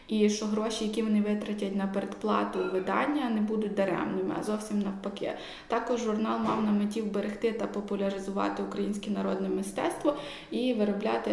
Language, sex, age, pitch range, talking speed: Ukrainian, female, 20-39, 190-220 Hz, 150 wpm